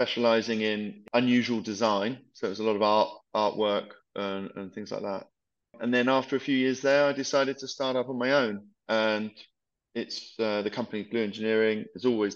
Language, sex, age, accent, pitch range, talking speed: English, male, 20-39, British, 100-120 Hz, 200 wpm